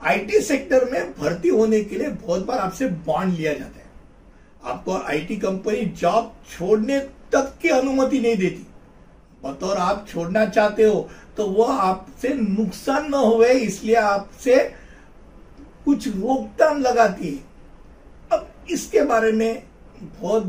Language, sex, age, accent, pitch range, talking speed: Hindi, male, 60-79, native, 185-260 Hz, 135 wpm